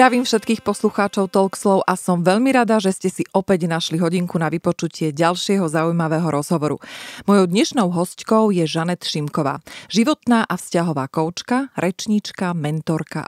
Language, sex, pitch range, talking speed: Slovak, female, 155-205 Hz, 140 wpm